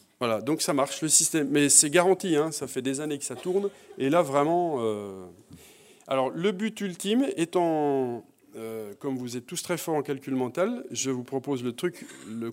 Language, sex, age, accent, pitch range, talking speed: French, male, 40-59, French, 140-195 Hz, 200 wpm